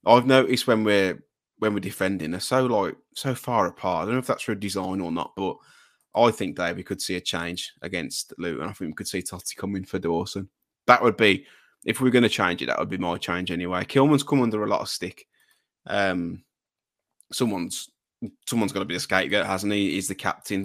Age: 20-39